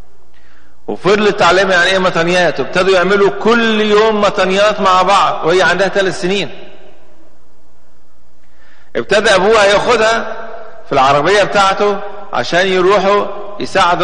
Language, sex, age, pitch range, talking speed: English, male, 40-59, 115-185 Hz, 105 wpm